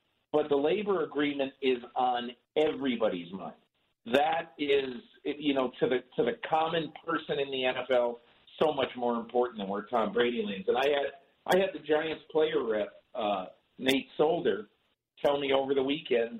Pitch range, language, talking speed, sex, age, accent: 125-155 Hz, English, 170 wpm, male, 50-69, American